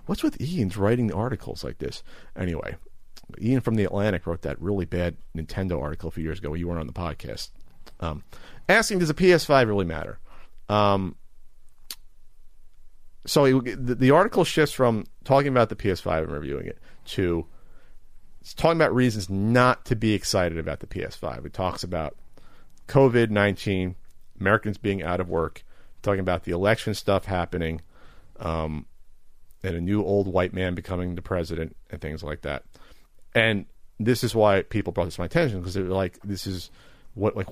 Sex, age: male, 40-59